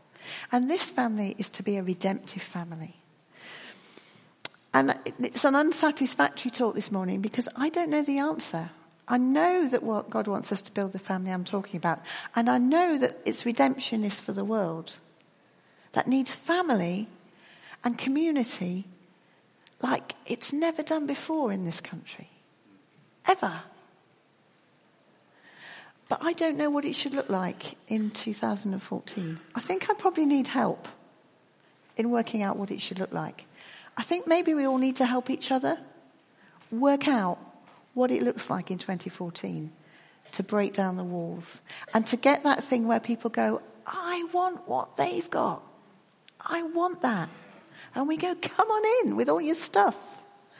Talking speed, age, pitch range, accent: 160 wpm, 40-59, 195-300 Hz, British